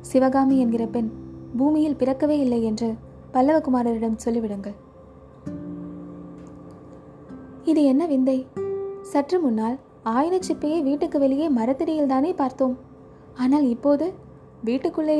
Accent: native